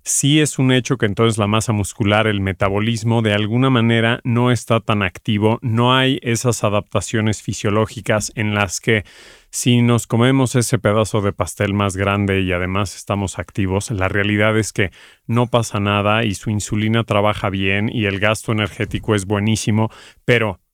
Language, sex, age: Spanish, male, 40-59